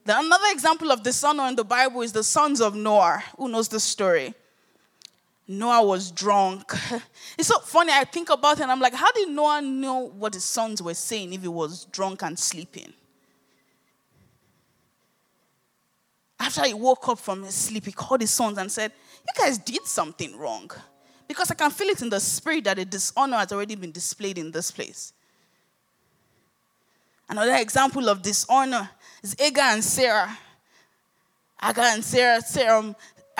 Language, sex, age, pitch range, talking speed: English, female, 20-39, 210-280 Hz, 165 wpm